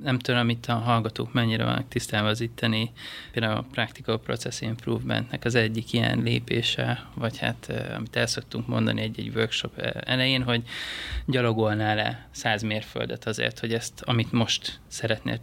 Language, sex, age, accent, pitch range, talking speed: English, male, 20-39, Finnish, 110-125 Hz, 135 wpm